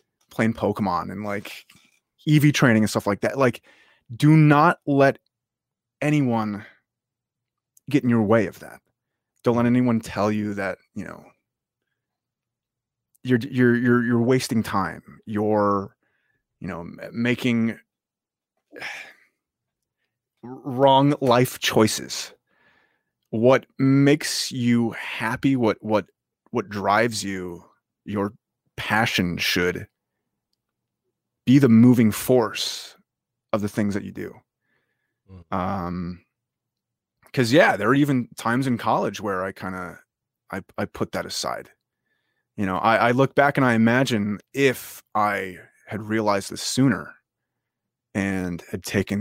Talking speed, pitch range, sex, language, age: 120 wpm, 100-130 Hz, male, English, 30-49